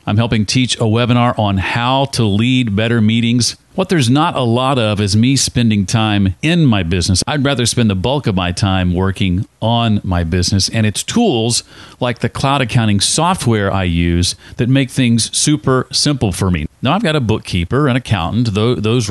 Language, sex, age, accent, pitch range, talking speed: English, male, 40-59, American, 100-130 Hz, 190 wpm